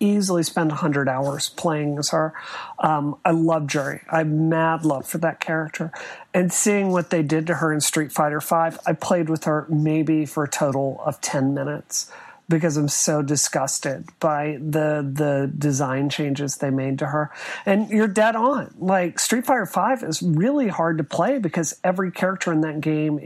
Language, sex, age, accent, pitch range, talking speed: English, male, 40-59, American, 155-195 Hz, 185 wpm